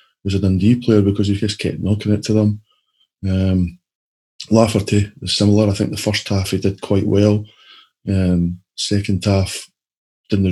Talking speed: 165 wpm